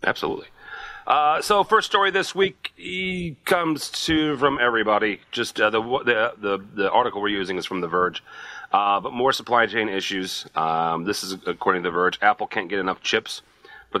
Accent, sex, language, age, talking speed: American, male, English, 40-59, 180 wpm